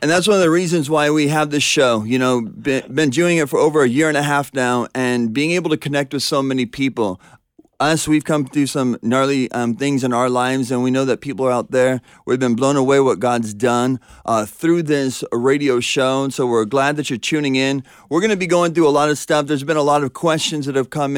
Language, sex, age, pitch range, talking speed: English, male, 30-49, 130-155 Hz, 260 wpm